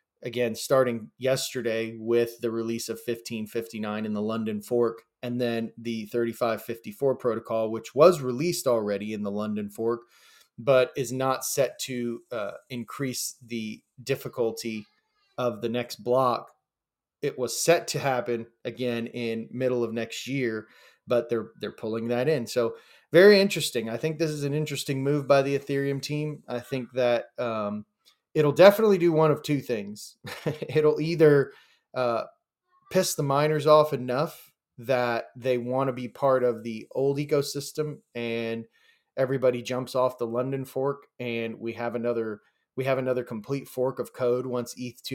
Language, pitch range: English, 115-140 Hz